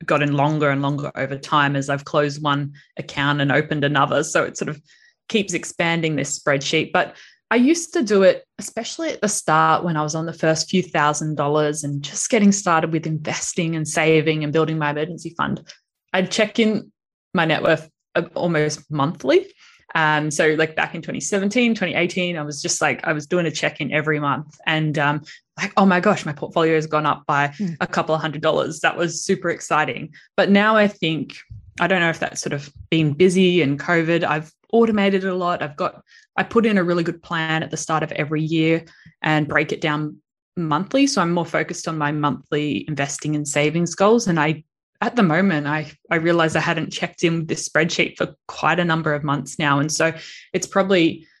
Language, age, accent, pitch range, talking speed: English, 20-39, Australian, 150-180 Hz, 205 wpm